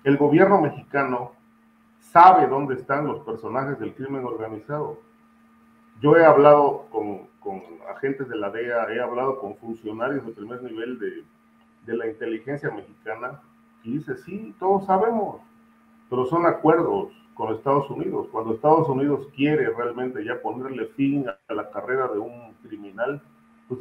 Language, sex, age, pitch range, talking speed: Spanish, male, 40-59, 100-145 Hz, 145 wpm